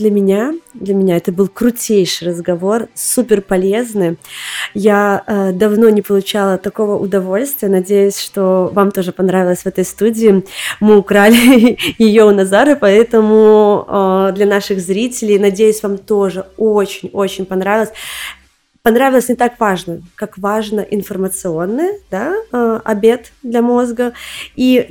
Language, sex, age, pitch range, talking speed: Russian, female, 20-39, 190-220 Hz, 130 wpm